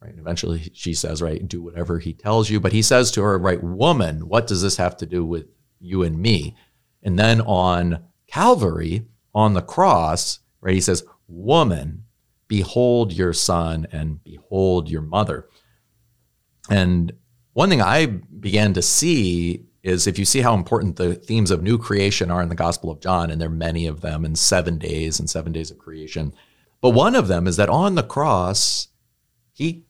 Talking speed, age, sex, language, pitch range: 185 wpm, 40-59, male, English, 85-110 Hz